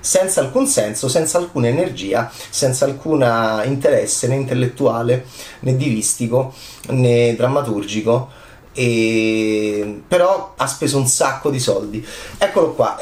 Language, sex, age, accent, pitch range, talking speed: Italian, male, 30-49, native, 120-180 Hz, 120 wpm